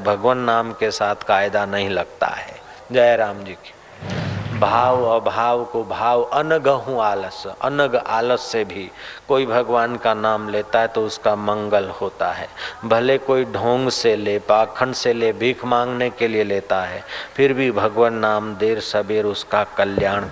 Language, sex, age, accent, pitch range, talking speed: Hindi, male, 40-59, native, 105-120 Hz, 165 wpm